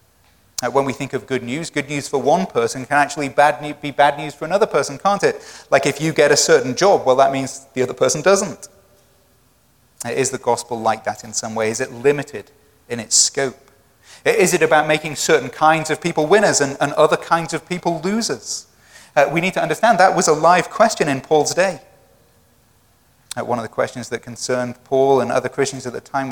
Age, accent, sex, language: 30-49, British, male, English